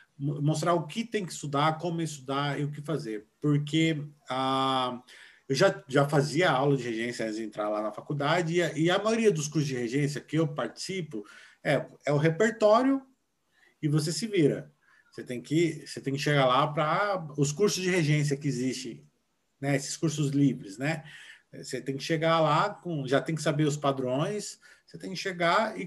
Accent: Brazilian